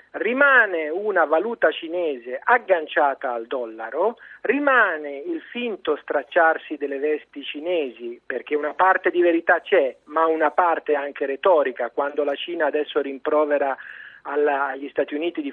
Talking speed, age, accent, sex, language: 130 wpm, 40-59, native, male, Italian